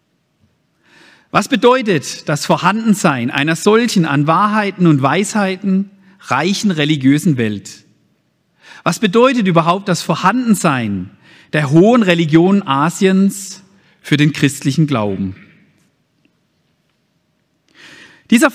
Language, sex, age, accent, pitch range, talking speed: German, male, 50-69, German, 140-205 Hz, 85 wpm